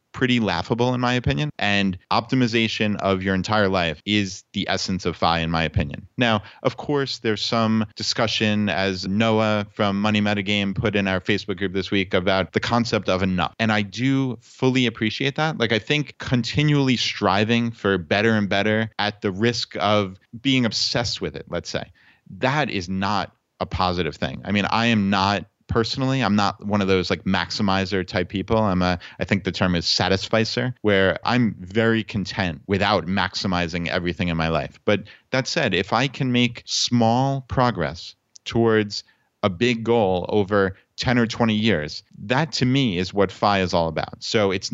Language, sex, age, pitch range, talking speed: English, male, 20-39, 100-120 Hz, 180 wpm